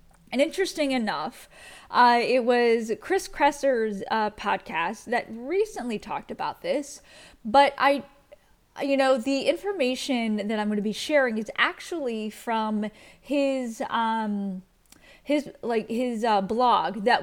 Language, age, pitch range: English, 10-29, 220-270 Hz